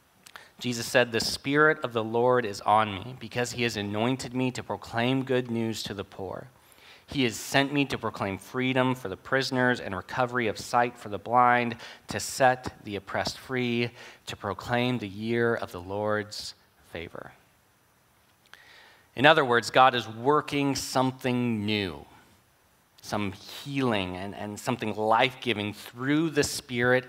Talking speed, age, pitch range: 155 wpm, 30-49, 110-130 Hz